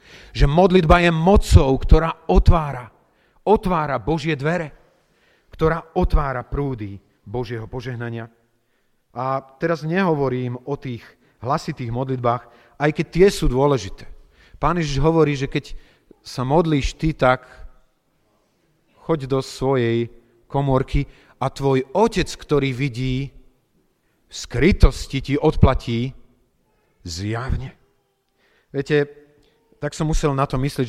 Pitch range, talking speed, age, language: 120-165 Hz, 105 wpm, 40-59, Slovak